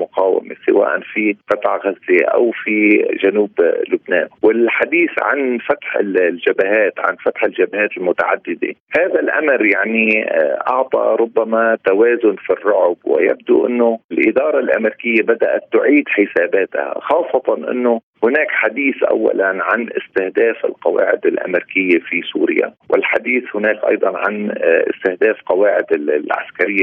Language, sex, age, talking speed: Arabic, male, 40-59, 110 wpm